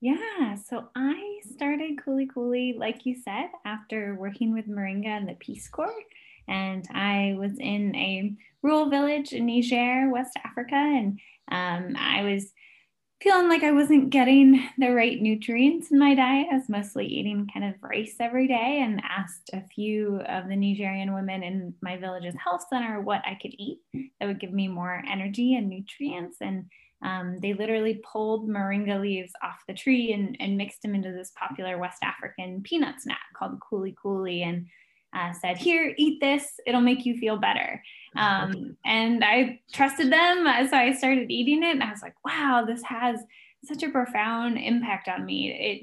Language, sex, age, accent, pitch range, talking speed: English, female, 10-29, American, 200-265 Hz, 180 wpm